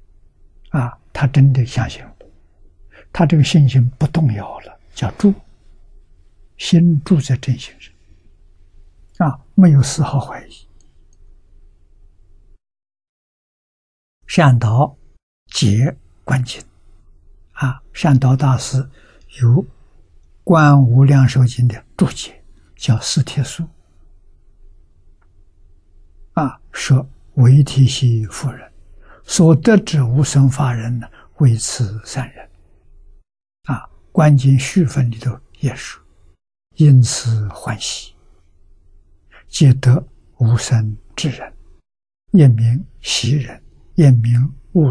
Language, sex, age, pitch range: Chinese, male, 60-79, 80-135 Hz